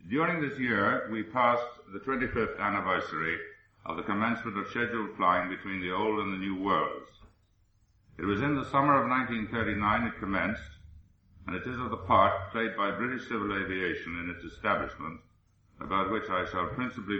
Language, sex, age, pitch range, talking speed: English, male, 60-79, 95-115 Hz, 170 wpm